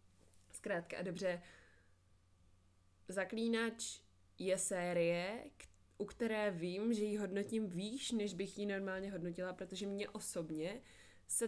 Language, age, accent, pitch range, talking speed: Czech, 20-39, native, 160-195 Hz, 120 wpm